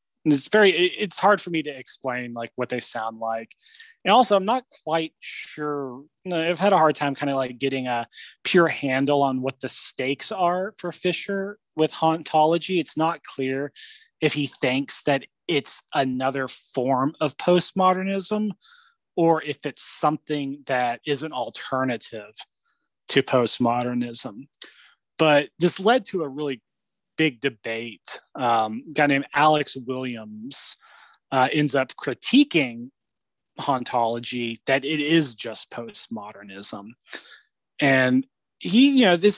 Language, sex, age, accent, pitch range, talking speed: English, male, 20-39, American, 125-175 Hz, 140 wpm